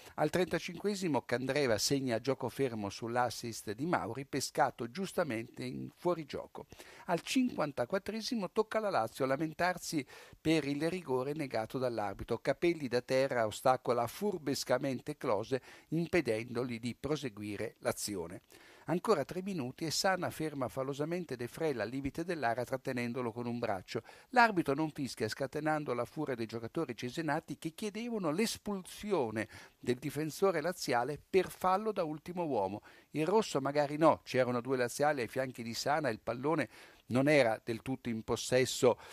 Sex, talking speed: male, 140 wpm